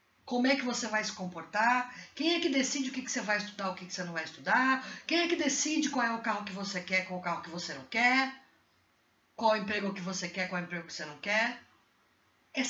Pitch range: 200-305 Hz